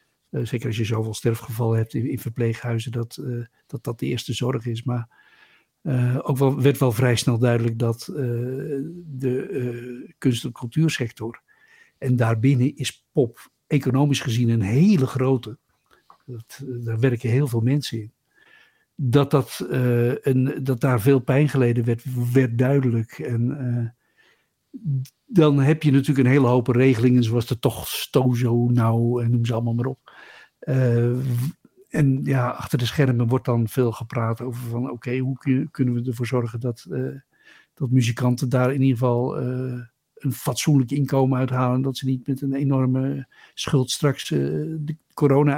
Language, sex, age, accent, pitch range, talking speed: English, male, 60-79, Dutch, 120-140 Hz, 165 wpm